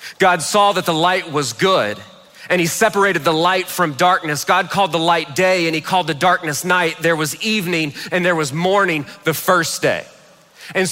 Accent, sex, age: American, male, 40-59